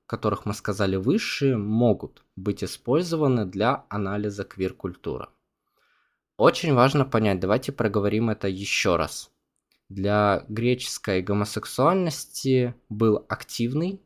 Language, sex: Russian, male